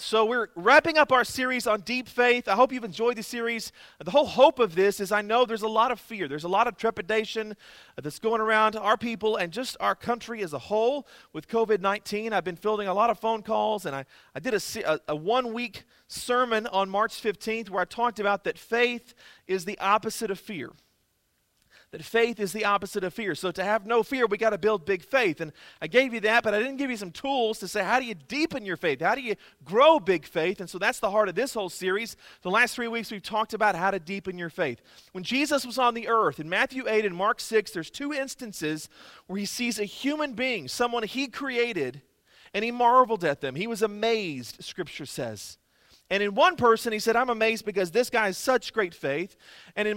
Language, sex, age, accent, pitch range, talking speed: English, male, 40-59, American, 200-245 Hz, 235 wpm